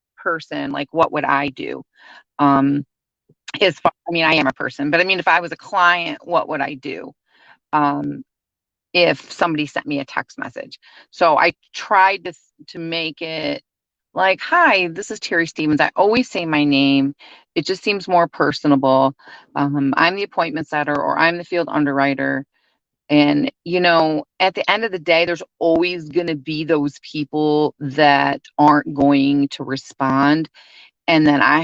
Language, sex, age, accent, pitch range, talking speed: English, female, 30-49, American, 145-180 Hz, 175 wpm